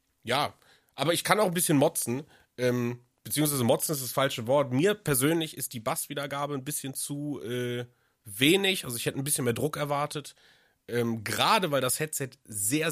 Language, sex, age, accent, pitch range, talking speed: German, male, 30-49, German, 120-150 Hz, 180 wpm